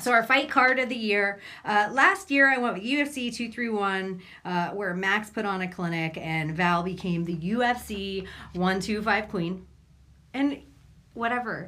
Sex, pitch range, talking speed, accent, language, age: female, 175-240 Hz, 160 wpm, American, English, 40-59